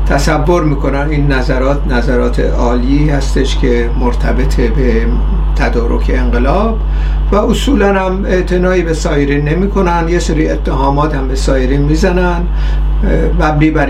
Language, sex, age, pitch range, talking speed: Persian, male, 50-69, 125-175 Hz, 125 wpm